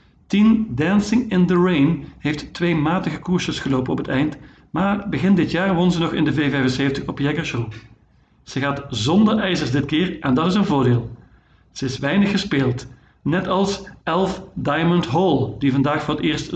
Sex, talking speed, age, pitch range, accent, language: male, 180 wpm, 50-69, 135-180 Hz, Dutch, Dutch